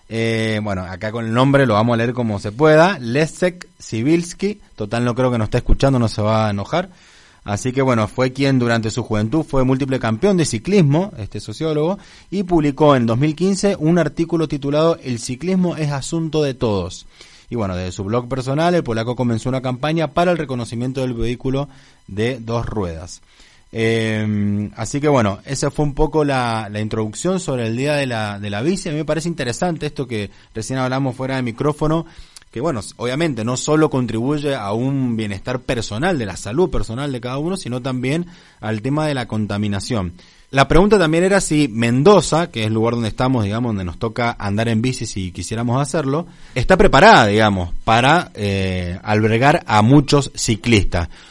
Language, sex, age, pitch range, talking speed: Spanish, male, 20-39, 110-150 Hz, 185 wpm